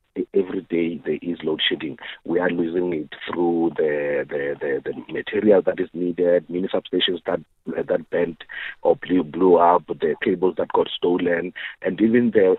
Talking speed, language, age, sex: 170 wpm, English, 50-69, male